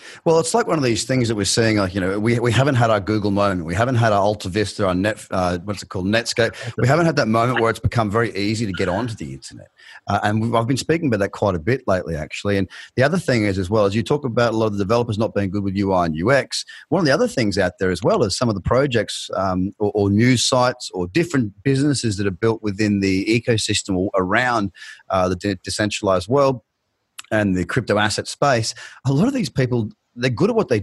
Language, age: English, 30-49